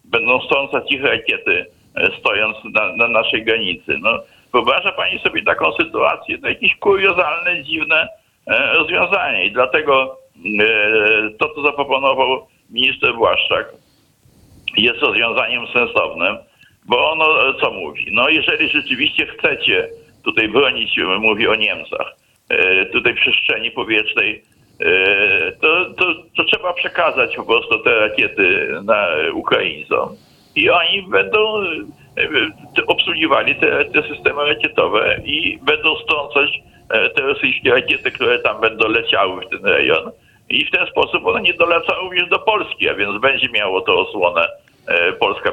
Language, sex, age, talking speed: Polish, male, 60-79, 125 wpm